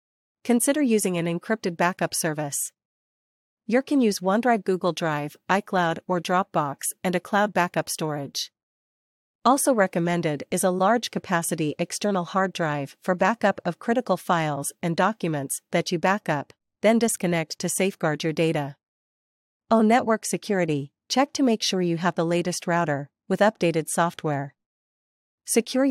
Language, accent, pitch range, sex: English, American, 165-205 Hz, female